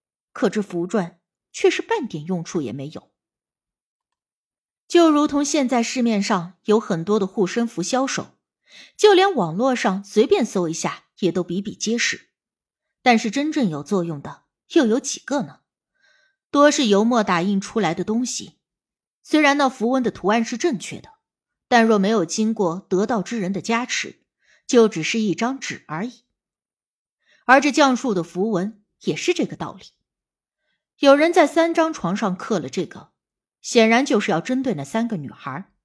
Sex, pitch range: female, 190-270 Hz